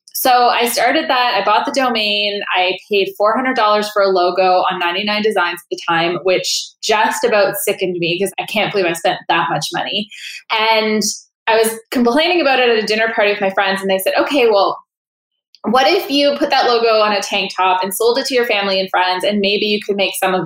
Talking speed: 225 wpm